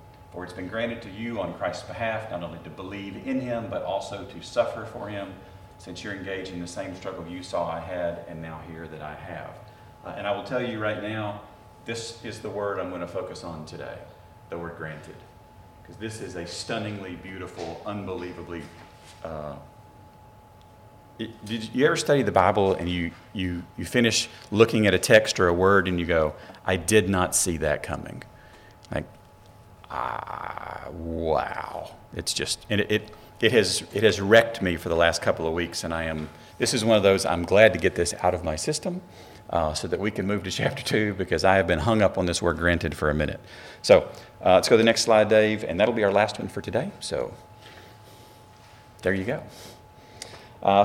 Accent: American